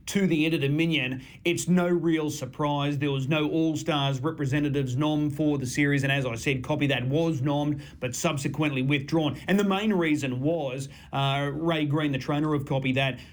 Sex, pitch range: male, 140-165 Hz